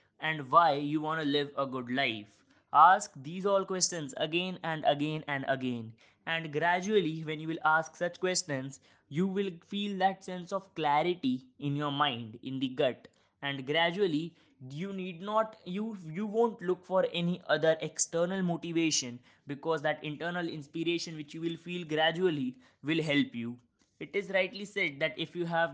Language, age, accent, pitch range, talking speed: English, 20-39, Indian, 135-175 Hz, 170 wpm